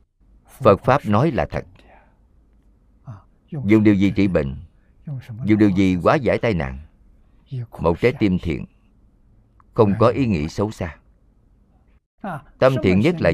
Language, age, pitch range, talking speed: Vietnamese, 50-69, 90-115 Hz, 140 wpm